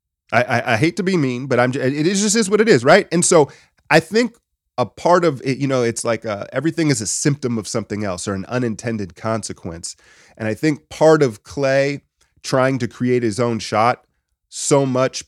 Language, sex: English, male